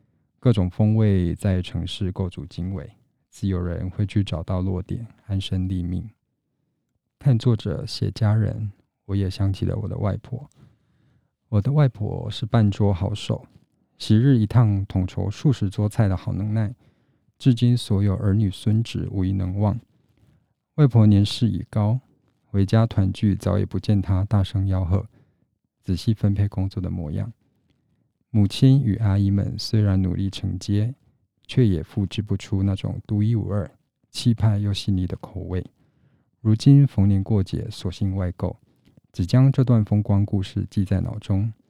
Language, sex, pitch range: Chinese, male, 95-115 Hz